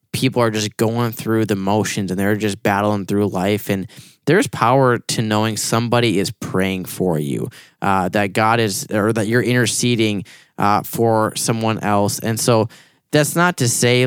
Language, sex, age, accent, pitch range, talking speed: English, male, 10-29, American, 105-125 Hz, 175 wpm